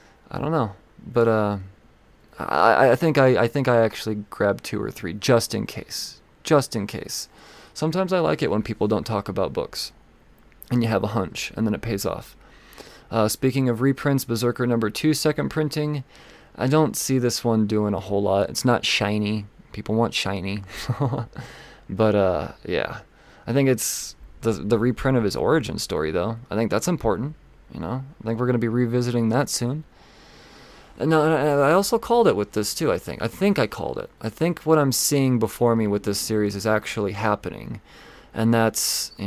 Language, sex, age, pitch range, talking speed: English, male, 20-39, 105-135 Hz, 195 wpm